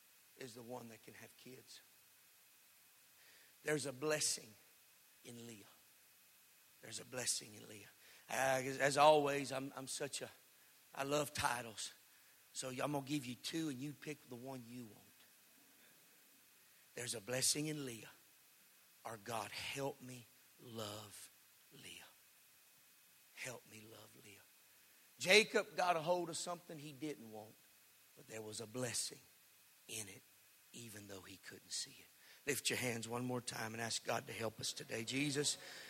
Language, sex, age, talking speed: English, male, 50-69, 155 wpm